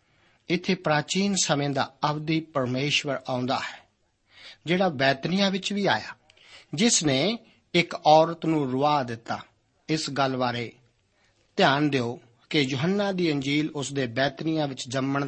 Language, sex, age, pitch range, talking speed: Punjabi, male, 50-69, 130-160 Hz, 140 wpm